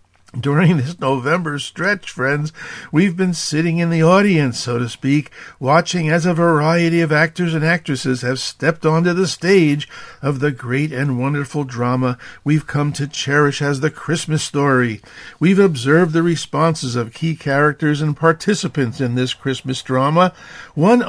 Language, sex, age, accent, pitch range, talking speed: English, male, 50-69, American, 130-170 Hz, 155 wpm